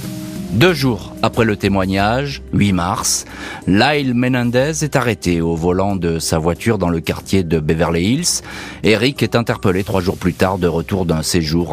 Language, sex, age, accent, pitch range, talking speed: French, male, 40-59, French, 90-130 Hz, 170 wpm